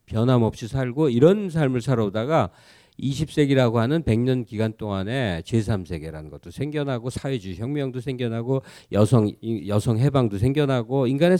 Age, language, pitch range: 50-69, Korean, 105-145 Hz